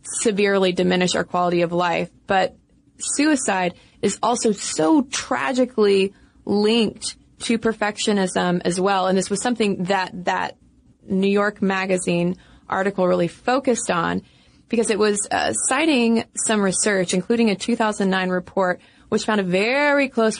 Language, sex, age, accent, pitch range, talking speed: English, female, 20-39, American, 185-225 Hz, 135 wpm